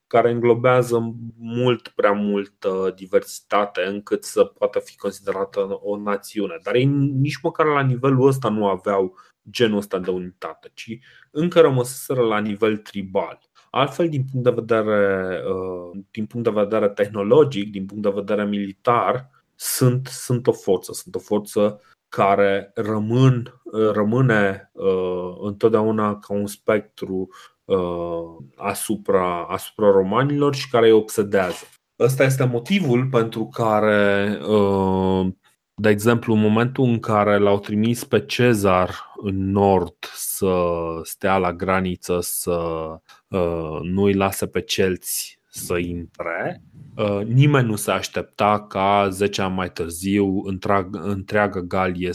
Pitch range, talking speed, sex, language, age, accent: 95-120 Hz, 125 wpm, male, Romanian, 30-49, native